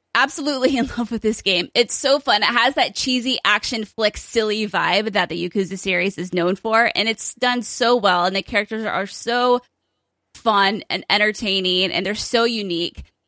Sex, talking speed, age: female, 185 wpm, 20-39